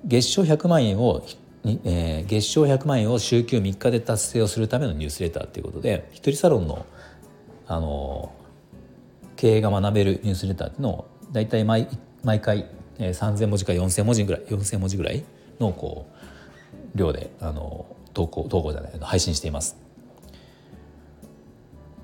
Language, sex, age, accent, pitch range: Japanese, male, 40-59, native, 80-120 Hz